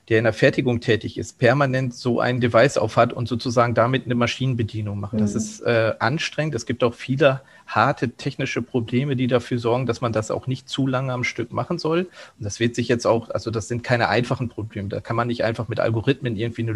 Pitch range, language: 115-130 Hz, German